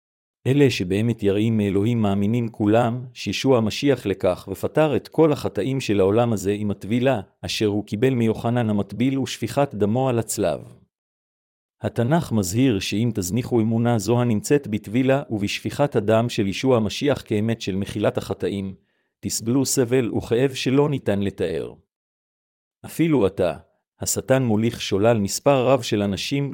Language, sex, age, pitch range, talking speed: Hebrew, male, 50-69, 105-130 Hz, 130 wpm